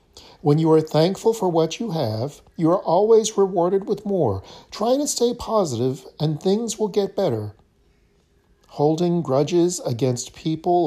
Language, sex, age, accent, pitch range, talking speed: English, male, 50-69, American, 120-185 Hz, 150 wpm